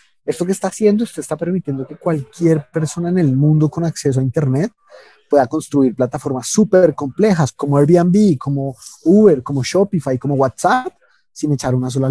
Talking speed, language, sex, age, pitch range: 170 wpm, Spanish, male, 30-49, 130-175 Hz